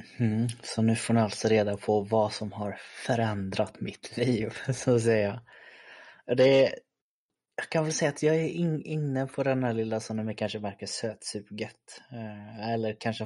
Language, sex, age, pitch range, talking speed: Swedish, male, 20-39, 110-125 Hz, 170 wpm